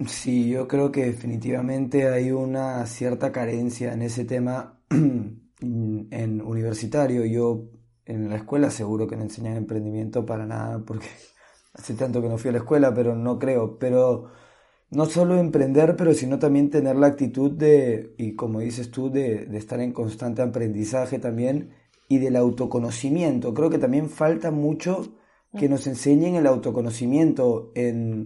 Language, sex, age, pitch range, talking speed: Spanish, male, 20-39, 115-135 Hz, 155 wpm